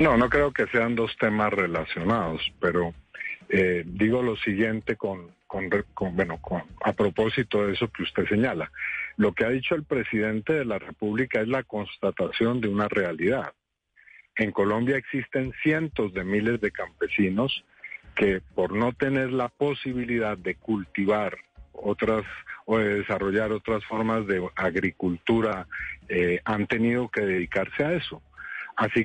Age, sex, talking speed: 50-69, male, 150 wpm